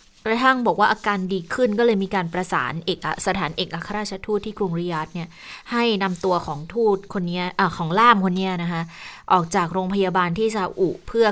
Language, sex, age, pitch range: Thai, female, 20-39, 165-195 Hz